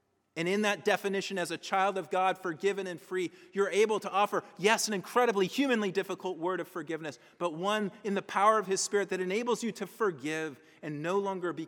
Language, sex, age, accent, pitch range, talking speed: English, male, 40-59, American, 130-195 Hz, 210 wpm